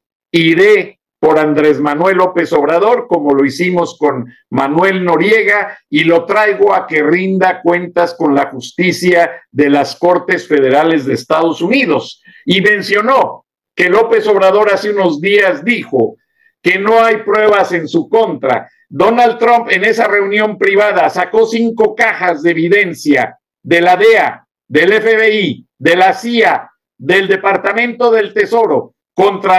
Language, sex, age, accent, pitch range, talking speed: Spanish, male, 50-69, Mexican, 165-225 Hz, 140 wpm